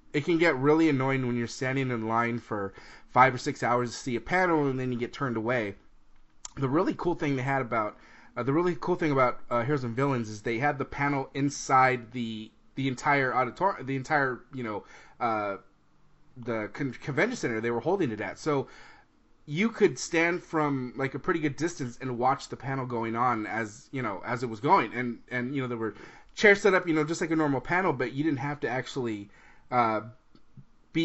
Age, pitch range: 30-49, 120-150 Hz